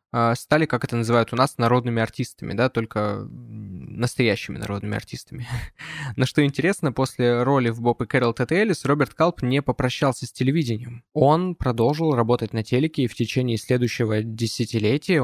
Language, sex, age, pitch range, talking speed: Russian, male, 20-39, 110-130 Hz, 160 wpm